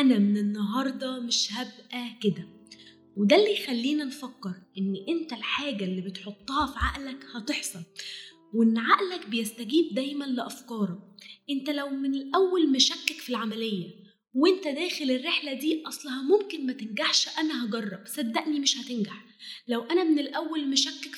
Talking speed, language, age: 135 wpm, Arabic, 20-39